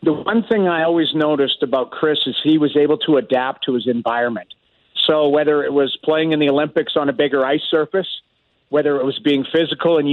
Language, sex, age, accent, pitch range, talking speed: English, male, 50-69, American, 140-165 Hz, 215 wpm